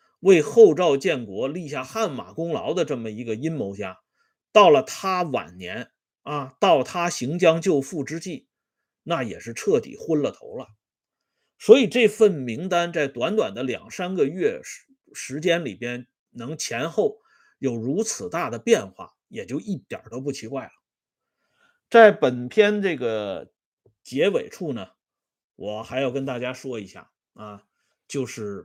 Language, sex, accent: Swedish, male, Chinese